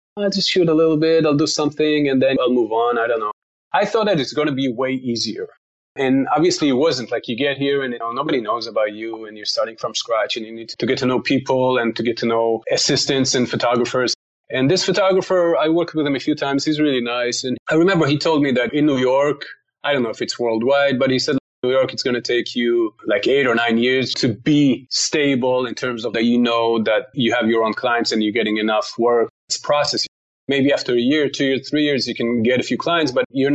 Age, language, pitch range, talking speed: 30-49, English, 120-150 Hz, 260 wpm